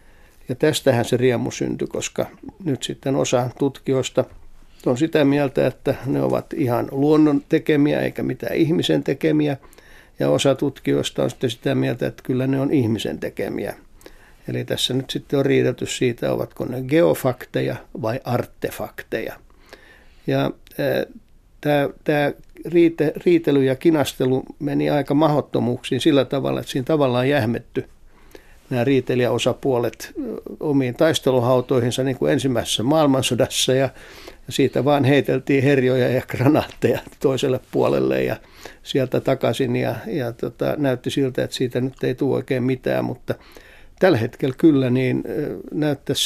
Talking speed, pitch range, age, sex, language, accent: 130 wpm, 125-145 Hz, 60-79, male, Finnish, native